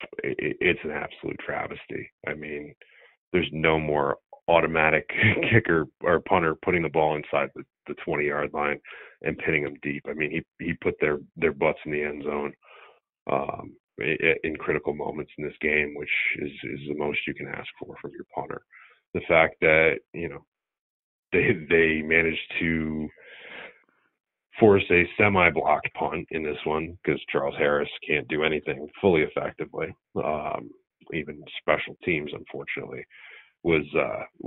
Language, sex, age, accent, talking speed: English, male, 40-59, American, 155 wpm